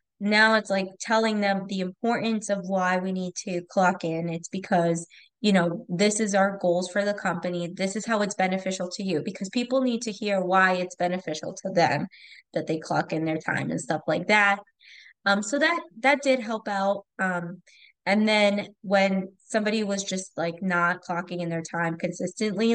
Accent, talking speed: American, 195 wpm